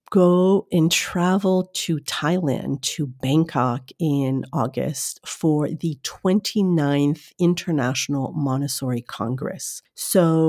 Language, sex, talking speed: English, female, 90 wpm